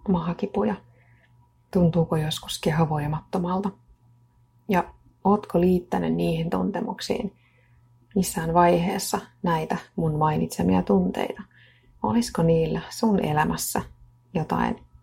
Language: Finnish